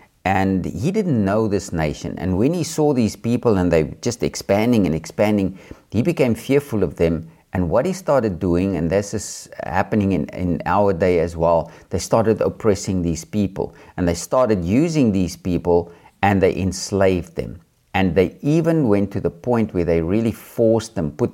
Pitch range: 90-110 Hz